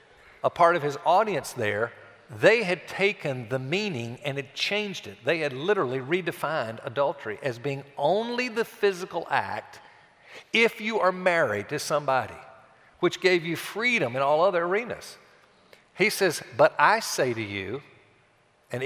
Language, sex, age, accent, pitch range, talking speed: English, male, 50-69, American, 135-180 Hz, 155 wpm